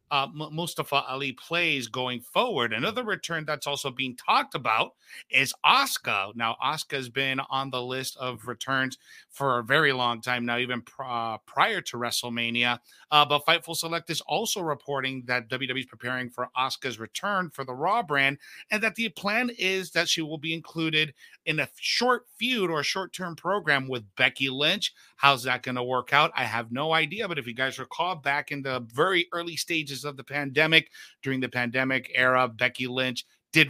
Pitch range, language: 125-155 Hz, English